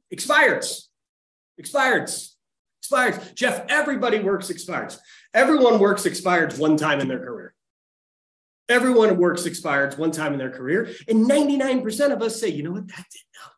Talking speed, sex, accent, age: 155 wpm, male, American, 30-49